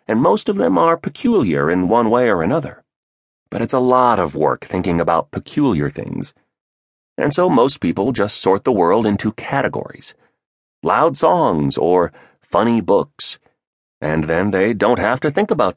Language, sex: English, male